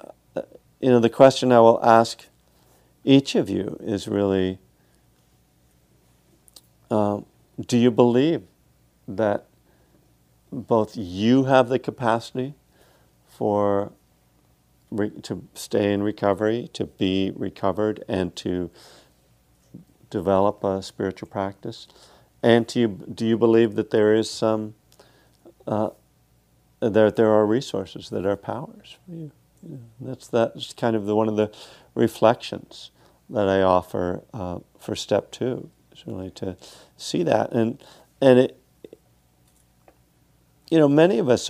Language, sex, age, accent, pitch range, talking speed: English, male, 50-69, American, 90-120 Hz, 125 wpm